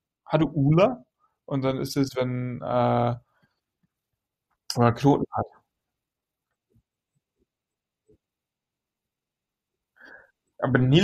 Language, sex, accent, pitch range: German, male, German, 125-170 Hz